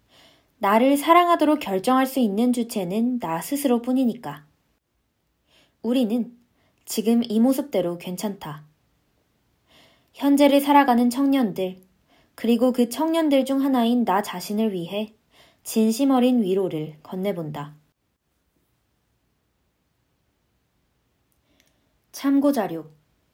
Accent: native